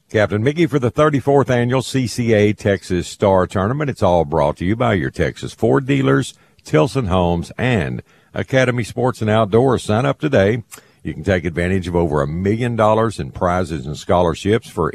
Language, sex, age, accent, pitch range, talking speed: English, male, 50-69, American, 85-110 Hz, 175 wpm